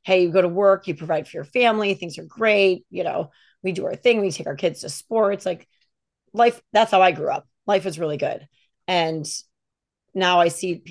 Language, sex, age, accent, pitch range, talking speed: English, female, 30-49, American, 160-190 Hz, 220 wpm